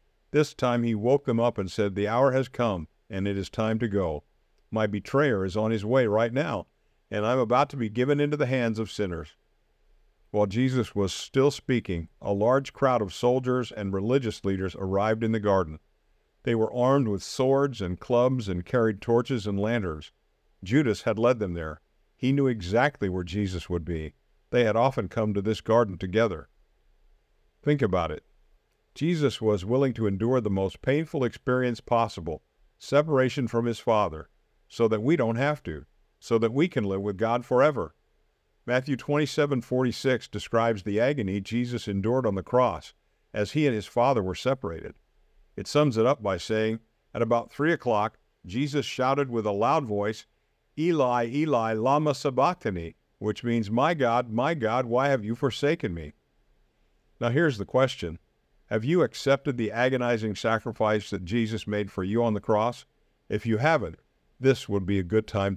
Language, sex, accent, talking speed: English, male, American, 180 wpm